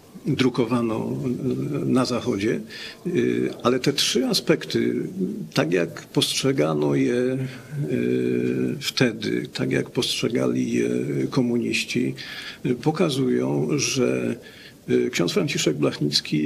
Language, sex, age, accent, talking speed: Polish, male, 50-69, native, 80 wpm